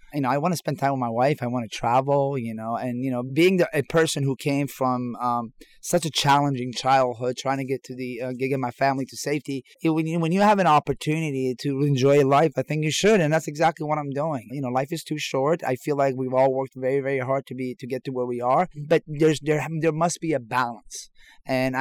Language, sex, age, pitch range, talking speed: English, male, 30-49, 125-145 Hz, 265 wpm